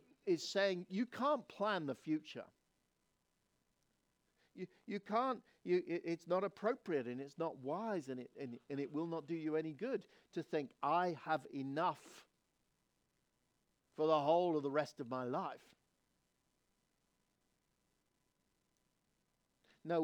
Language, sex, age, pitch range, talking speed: English, male, 50-69, 120-165 Hz, 135 wpm